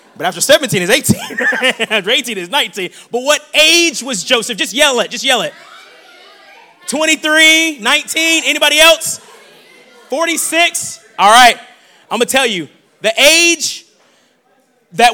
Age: 20-39